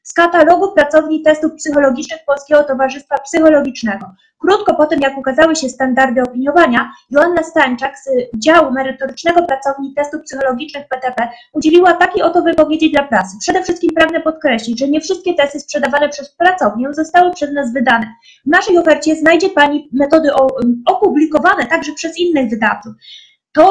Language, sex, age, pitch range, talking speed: Polish, female, 20-39, 255-325 Hz, 145 wpm